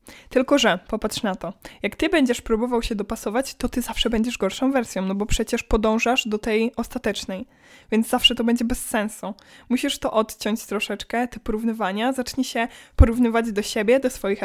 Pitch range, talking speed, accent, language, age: 210-245 Hz, 180 wpm, native, Polish, 20-39